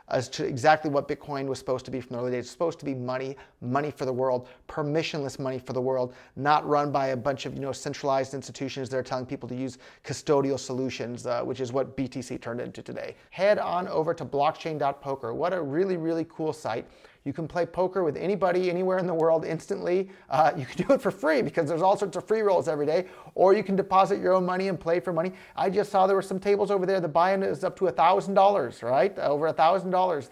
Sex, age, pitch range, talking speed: male, 30-49, 130-180 Hz, 240 wpm